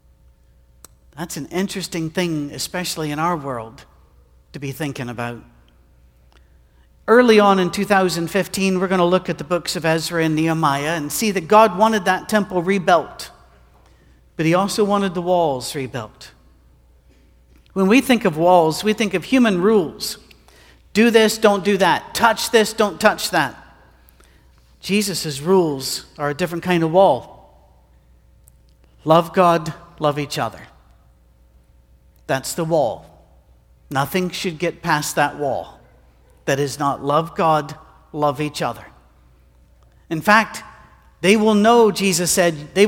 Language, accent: English, American